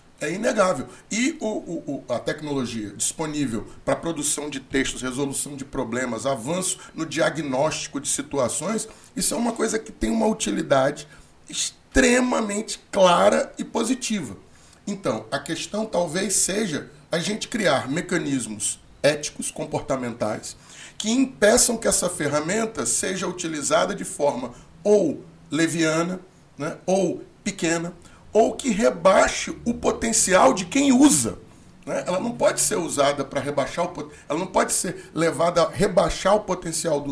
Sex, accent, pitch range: male, Brazilian, 135-210 Hz